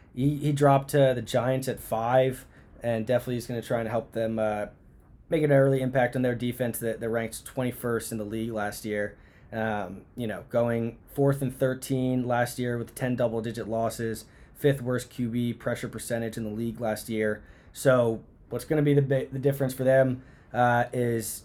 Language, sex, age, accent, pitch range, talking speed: English, male, 20-39, American, 115-130 Hz, 200 wpm